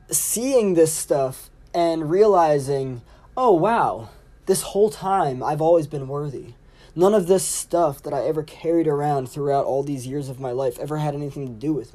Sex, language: male, English